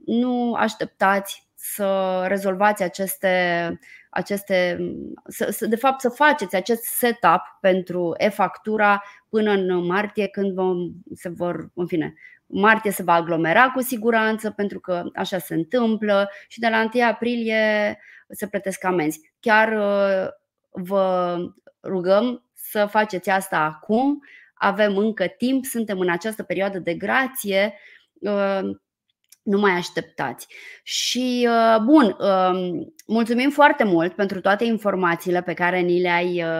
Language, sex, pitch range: Romanian, female, 180-215 Hz